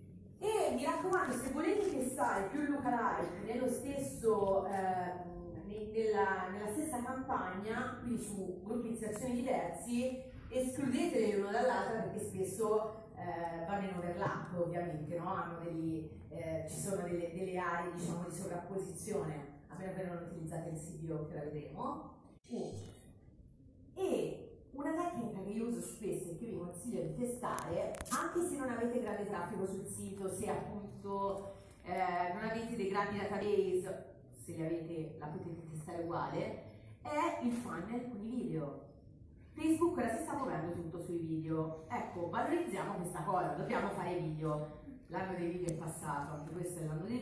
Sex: female